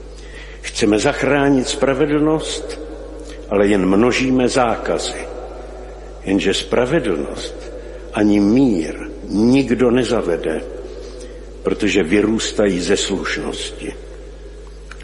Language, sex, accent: Czech, male, native